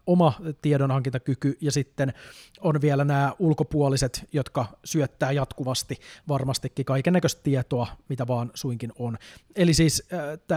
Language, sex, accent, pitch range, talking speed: Finnish, male, native, 130-160 Hz, 120 wpm